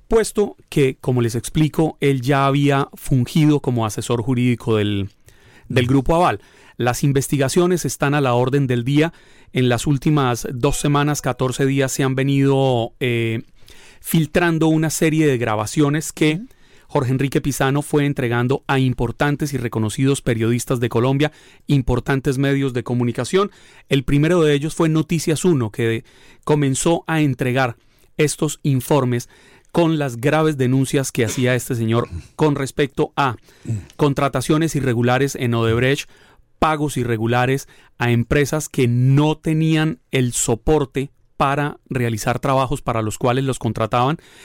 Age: 30-49